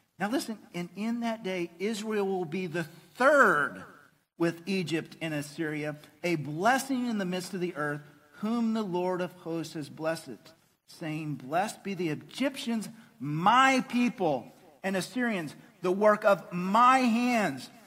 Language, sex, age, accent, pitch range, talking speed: English, male, 50-69, American, 185-240 Hz, 150 wpm